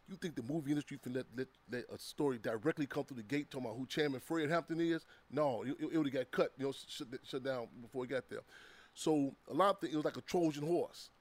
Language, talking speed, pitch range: English, 245 wpm, 130-160 Hz